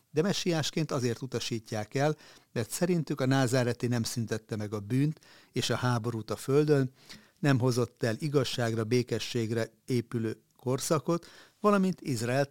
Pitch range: 115-135 Hz